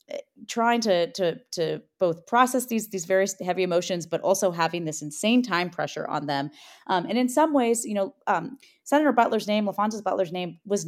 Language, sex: English, female